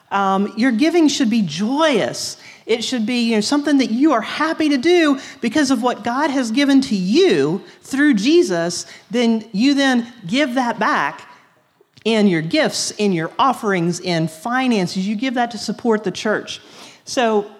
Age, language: 40-59, English